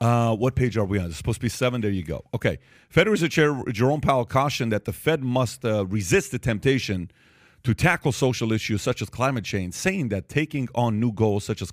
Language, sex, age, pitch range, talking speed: English, male, 40-59, 110-140 Hz, 230 wpm